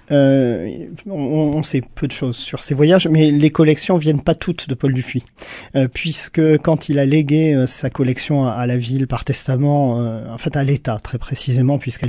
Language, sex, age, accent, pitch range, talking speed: French, male, 40-59, French, 130-155 Hz, 210 wpm